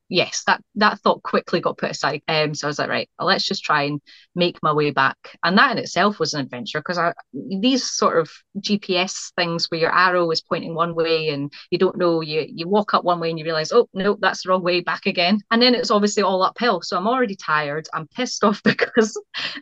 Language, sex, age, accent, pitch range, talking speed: English, female, 30-49, British, 170-225 Hz, 240 wpm